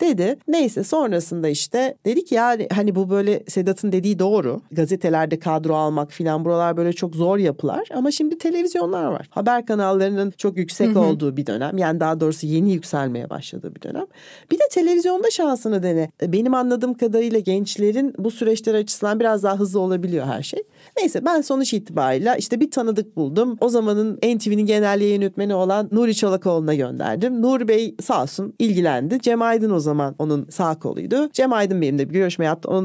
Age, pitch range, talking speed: 40-59, 170-230 Hz, 175 wpm